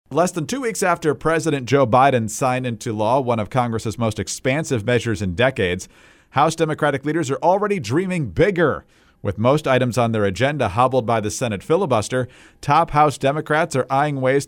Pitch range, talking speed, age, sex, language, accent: 115-150 Hz, 180 wpm, 40-59, male, English, American